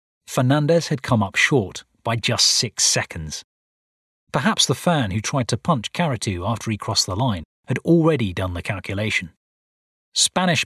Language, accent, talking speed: English, British, 160 wpm